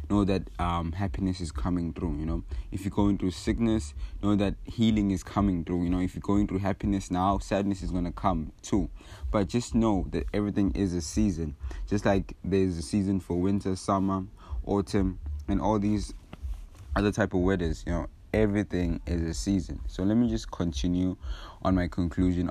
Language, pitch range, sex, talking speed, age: English, 85-100 Hz, male, 190 wpm, 20-39